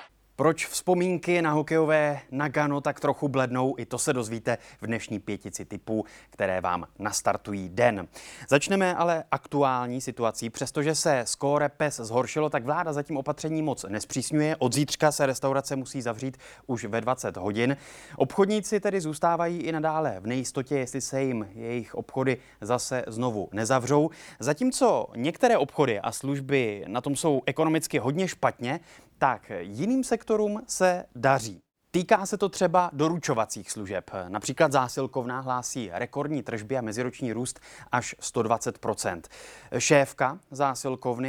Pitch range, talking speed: 115-150 Hz, 140 wpm